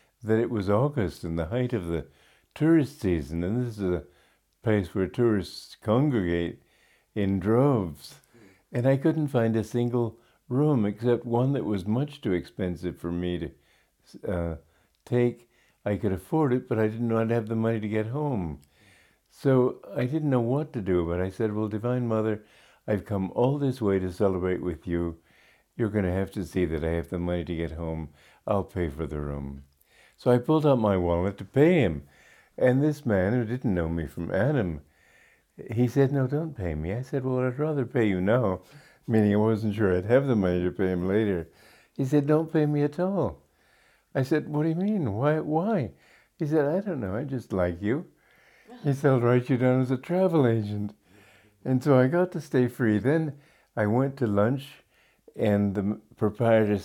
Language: English